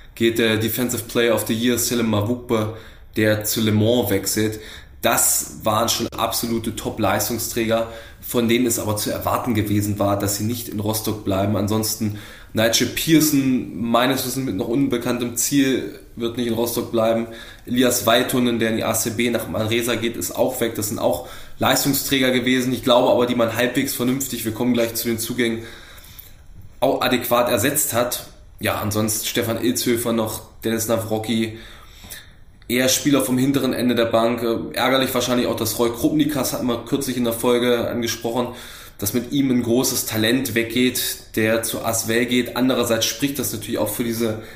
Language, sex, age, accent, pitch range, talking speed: German, male, 20-39, German, 110-125 Hz, 170 wpm